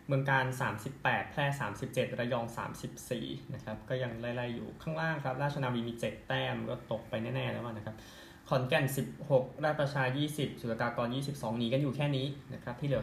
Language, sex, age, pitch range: Thai, male, 20-39, 110-135 Hz